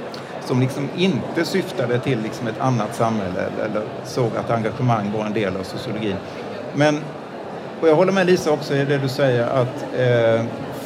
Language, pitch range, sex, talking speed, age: Swedish, 125-155 Hz, male, 170 wpm, 50-69